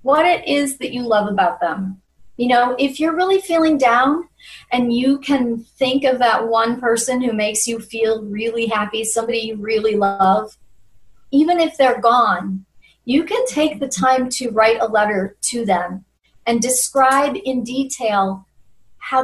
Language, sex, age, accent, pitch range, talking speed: English, female, 40-59, American, 215-265 Hz, 165 wpm